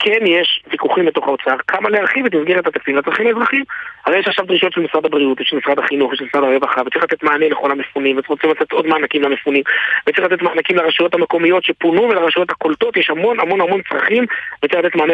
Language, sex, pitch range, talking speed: Hebrew, male, 155-230 Hz, 45 wpm